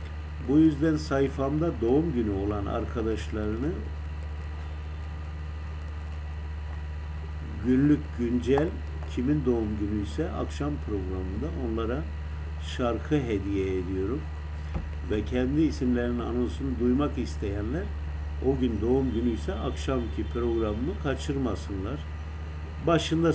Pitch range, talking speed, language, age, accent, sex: 80-100 Hz, 85 wpm, Turkish, 50-69, native, male